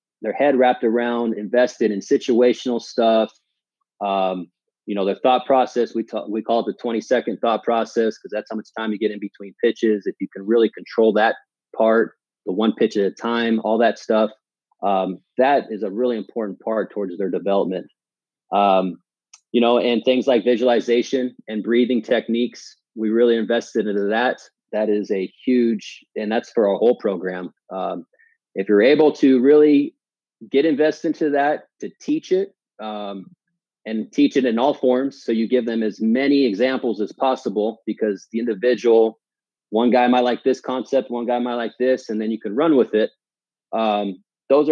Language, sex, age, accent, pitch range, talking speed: English, male, 30-49, American, 110-125 Hz, 185 wpm